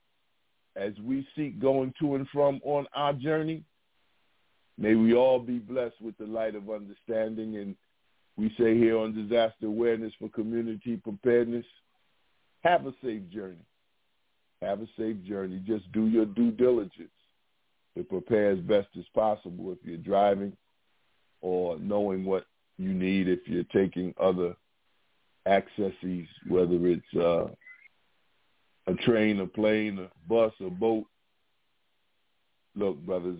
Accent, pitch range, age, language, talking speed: American, 95-115 Hz, 50-69, English, 135 wpm